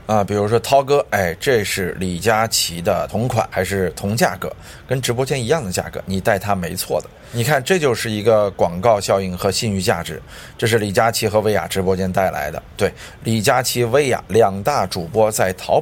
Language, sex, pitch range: Chinese, male, 90-115 Hz